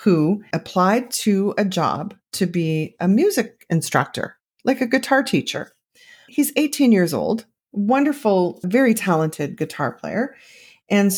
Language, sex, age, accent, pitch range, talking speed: English, female, 40-59, American, 165-225 Hz, 130 wpm